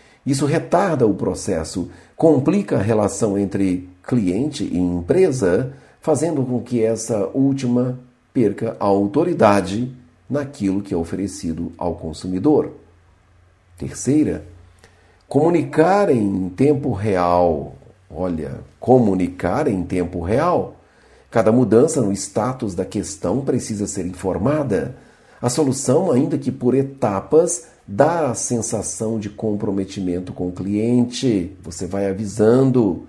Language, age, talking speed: Portuguese, 50-69, 110 wpm